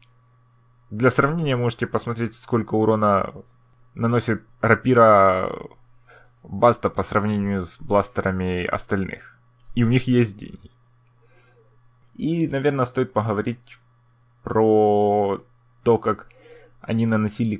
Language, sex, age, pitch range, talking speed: Russian, male, 20-39, 110-125 Hz, 95 wpm